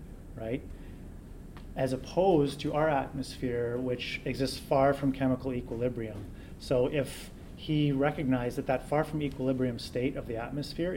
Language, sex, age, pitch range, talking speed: English, male, 30-49, 115-135 Hz, 135 wpm